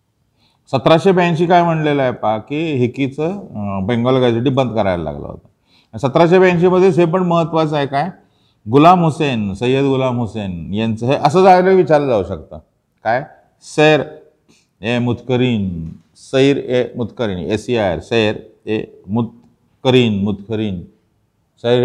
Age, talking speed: 40-59, 120 wpm